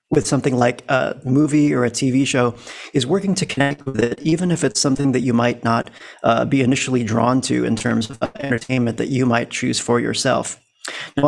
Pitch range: 125-150 Hz